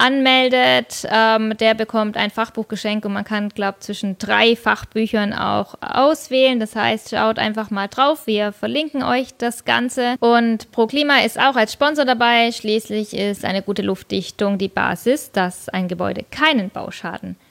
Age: 20-39